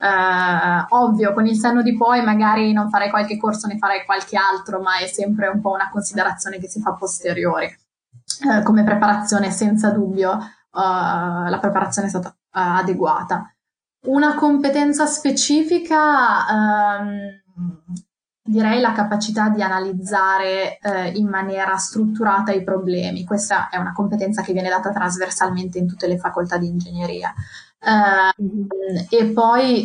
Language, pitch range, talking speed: Italian, 190-215 Hz, 130 wpm